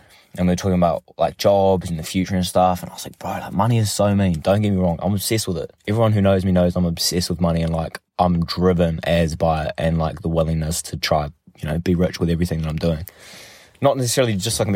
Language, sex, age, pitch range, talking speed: English, male, 20-39, 85-100 Hz, 275 wpm